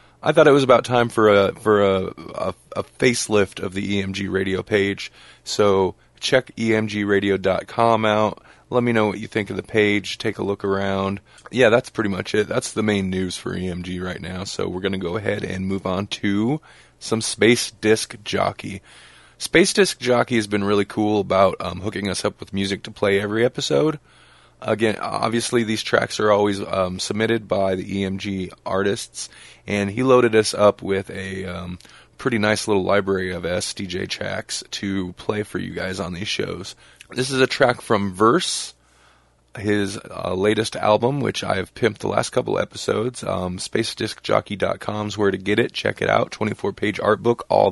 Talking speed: 185 wpm